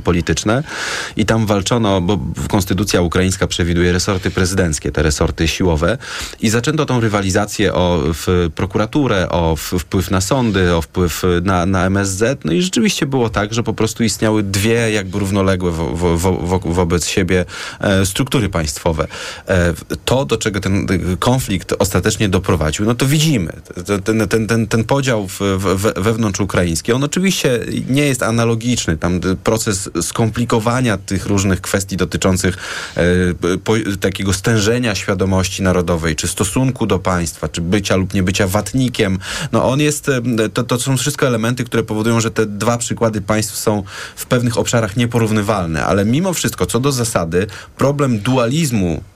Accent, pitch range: native, 90-115 Hz